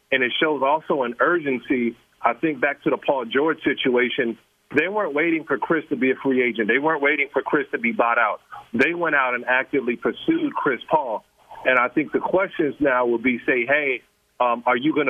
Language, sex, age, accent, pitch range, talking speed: English, male, 40-59, American, 130-160 Hz, 220 wpm